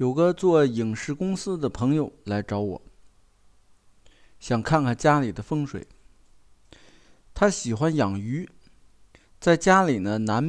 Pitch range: 105-155 Hz